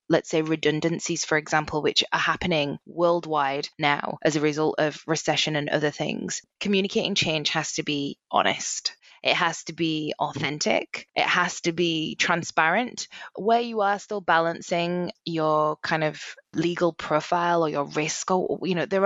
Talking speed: 150 wpm